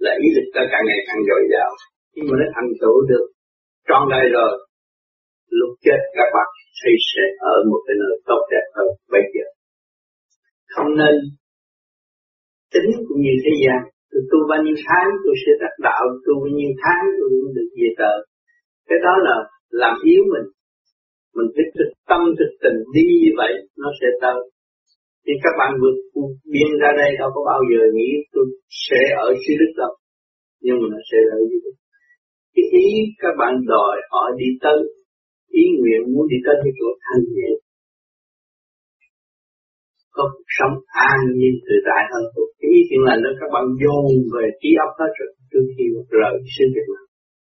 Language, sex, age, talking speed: Vietnamese, male, 50-69, 185 wpm